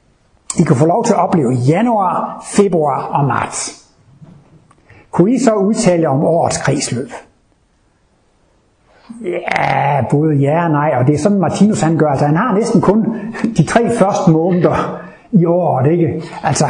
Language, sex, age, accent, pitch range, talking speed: Danish, male, 60-79, native, 145-190 Hz, 155 wpm